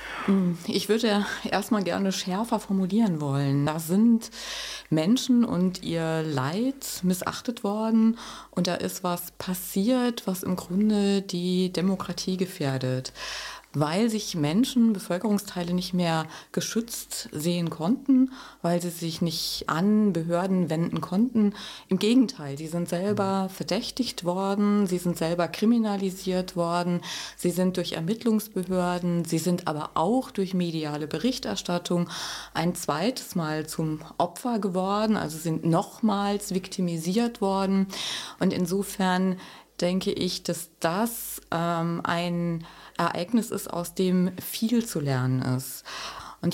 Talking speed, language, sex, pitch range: 120 wpm, German, female, 170-215 Hz